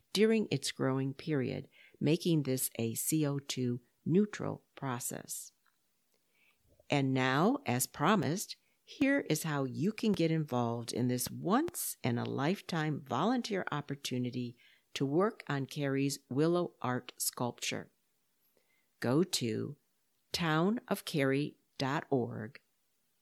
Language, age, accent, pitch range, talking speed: English, 50-69, American, 120-160 Hz, 90 wpm